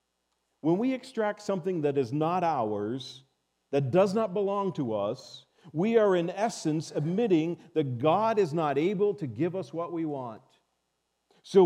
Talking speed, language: 160 wpm, English